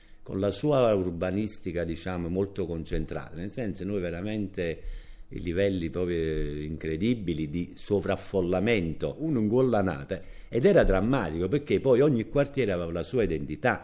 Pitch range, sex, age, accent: 80-100 Hz, male, 50-69, native